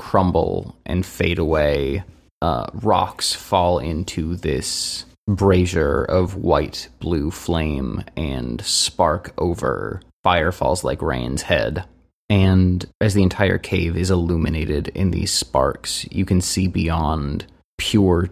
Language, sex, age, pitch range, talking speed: English, male, 20-39, 85-95 Hz, 120 wpm